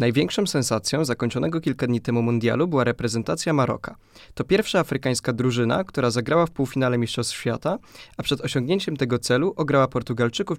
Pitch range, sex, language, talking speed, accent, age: 120-155 Hz, male, Polish, 155 wpm, native, 20-39